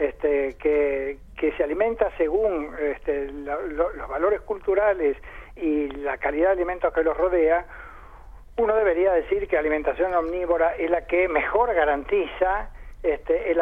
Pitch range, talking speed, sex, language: 160-230 Hz, 130 wpm, male, Spanish